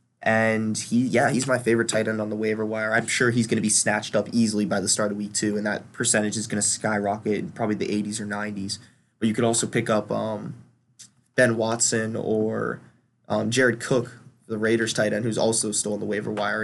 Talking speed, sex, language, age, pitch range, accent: 230 wpm, male, English, 20-39, 110-125 Hz, American